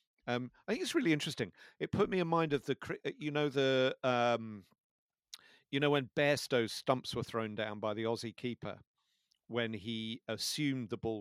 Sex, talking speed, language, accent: male, 180 wpm, English, British